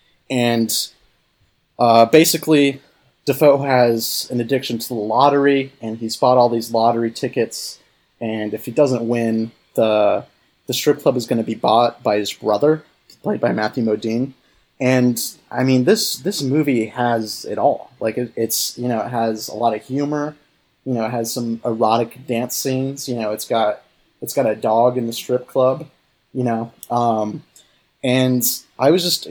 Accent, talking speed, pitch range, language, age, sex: American, 170 wpm, 115-135 Hz, English, 30-49, male